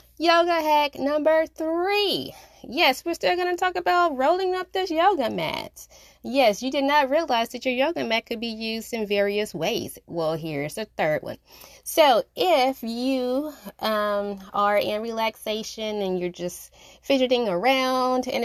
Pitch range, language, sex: 190-275 Hz, English, female